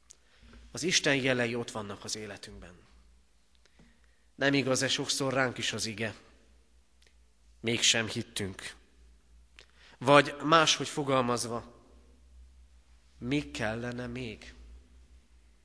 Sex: male